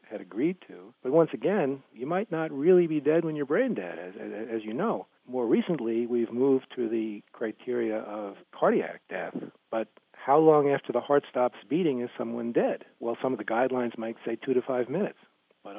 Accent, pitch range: American, 110-135 Hz